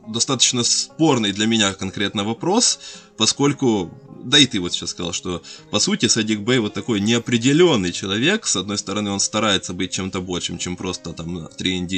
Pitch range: 95-120 Hz